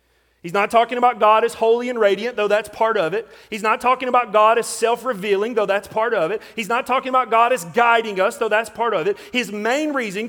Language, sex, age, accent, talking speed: English, male, 40-59, American, 245 wpm